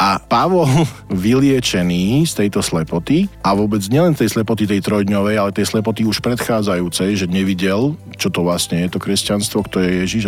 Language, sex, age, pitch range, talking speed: Slovak, male, 40-59, 90-110 Hz, 170 wpm